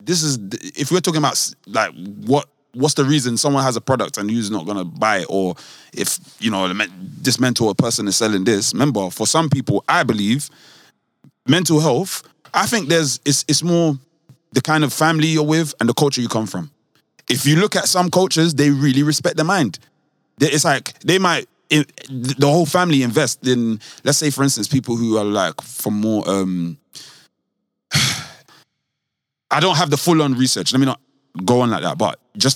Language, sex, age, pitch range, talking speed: English, male, 20-39, 110-150 Hz, 190 wpm